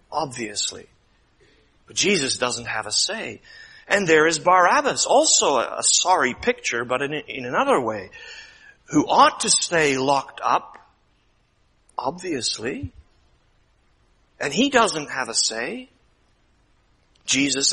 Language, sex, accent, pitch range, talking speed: English, male, American, 120-165 Hz, 120 wpm